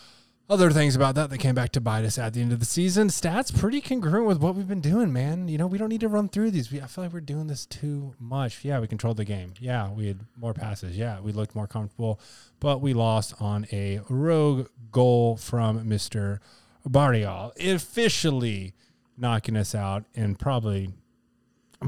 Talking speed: 205 wpm